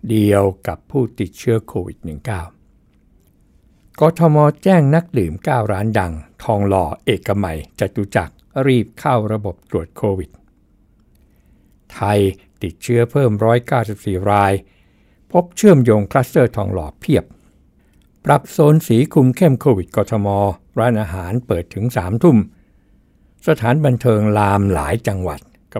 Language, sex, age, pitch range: Thai, male, 60-79, 95-125 Hz